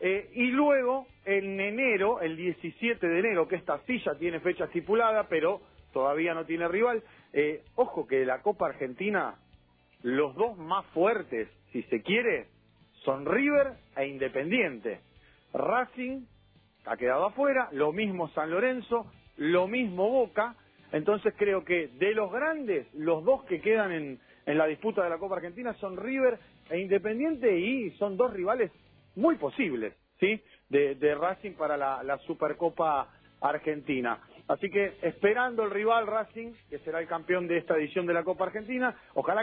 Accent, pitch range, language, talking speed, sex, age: Argentinian, 160-230 Hz, Spanish, 160 wpm, male, 40-59